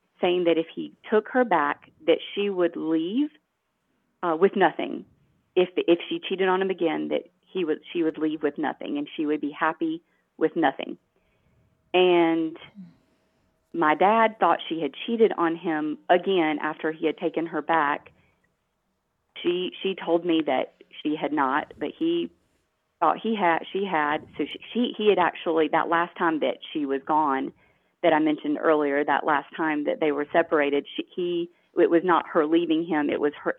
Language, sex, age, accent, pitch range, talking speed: English, female, 40-59, American, 155-205 Hz, 180 wpm